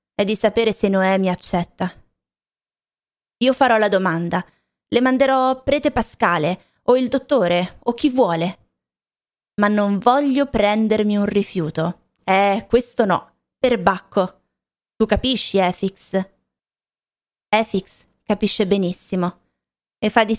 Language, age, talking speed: Italian, 20-39, 110 wpm